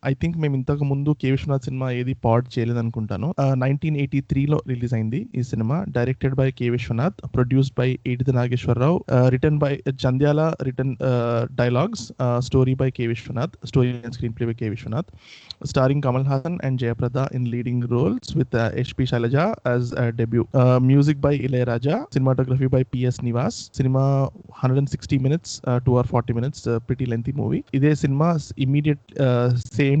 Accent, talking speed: native, 150 wpm